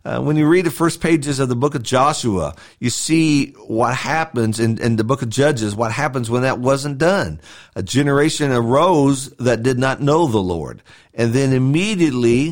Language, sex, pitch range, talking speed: English, male, 110-145 Hz, 190 wpm